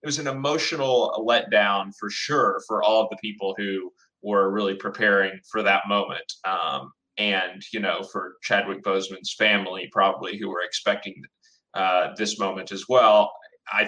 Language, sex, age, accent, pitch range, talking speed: English, male, 30-49, American, 100-130 Hz, 160 wpm